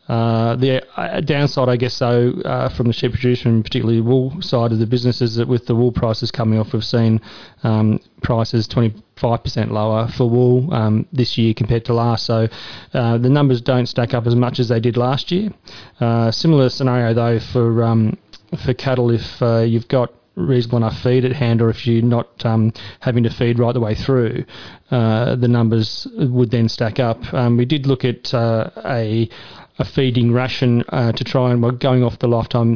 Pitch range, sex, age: 115-125 Hz, male, 30-49